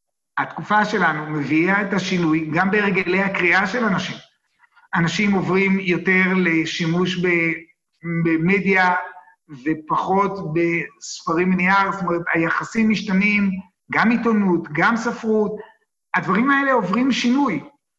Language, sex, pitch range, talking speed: Hebrew, male, 170-220 Hz, 105 wpm